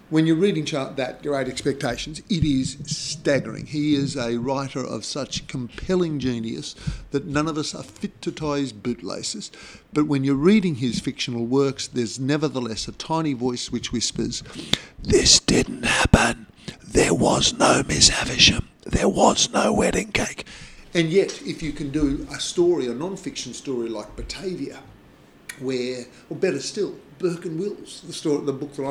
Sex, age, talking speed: male, 50-69, 160 wpm